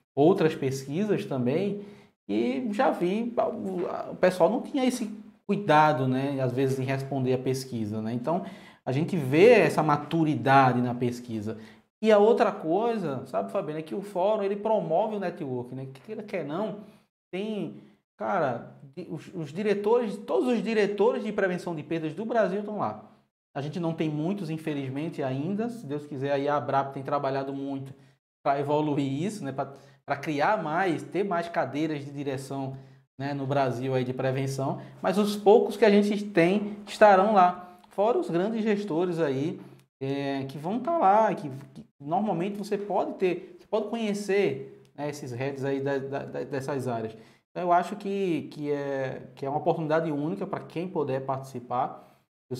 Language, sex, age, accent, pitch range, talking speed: Portuguese, male, 20-39, Brazilian, 135-200 Hz, 170 wpm